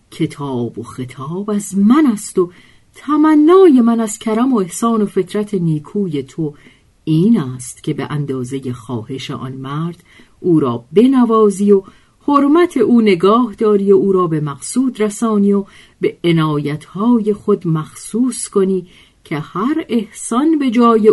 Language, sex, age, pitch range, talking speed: Persian, female, 50-69, 145-225 Hz, 140 wpm